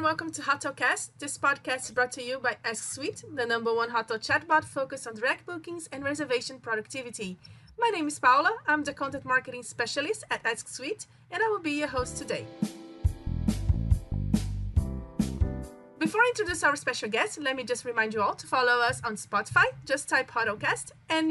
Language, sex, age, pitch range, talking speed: English, female, 30-49, 235-300 Hz, 175 wpm